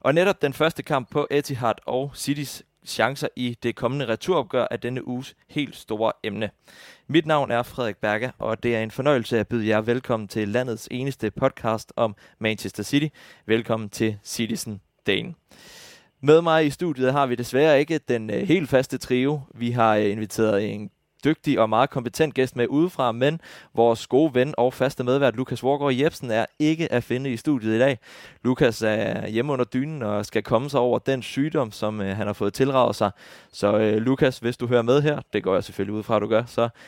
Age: 20-39